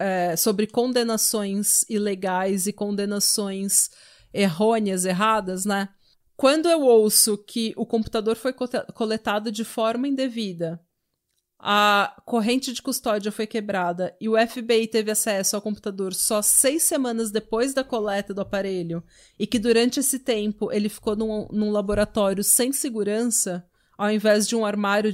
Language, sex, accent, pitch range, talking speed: Portuguese, female, Brazilian, 205-240 Hz, 135 wpm